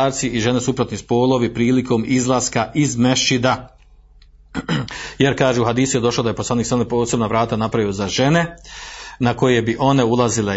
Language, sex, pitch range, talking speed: Croatian, male, 115-135 Hz, 170 wpm